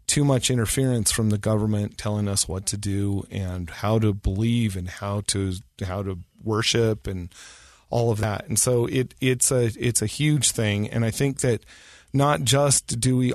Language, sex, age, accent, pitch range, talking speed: English, male, 40-59, American, 105-125 Hz, 190 wpm